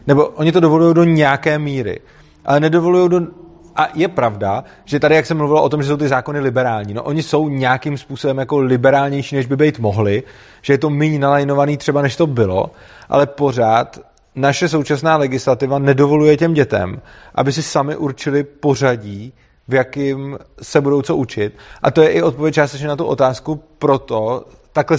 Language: Czech